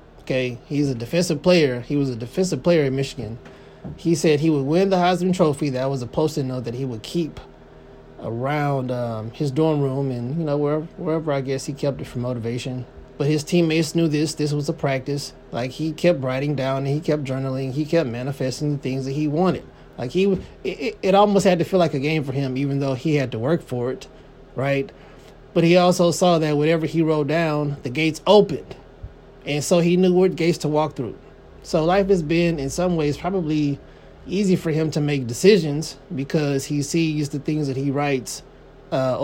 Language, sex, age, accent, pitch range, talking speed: English, male, 20-39, American, 130-165 Hz, 210 wpm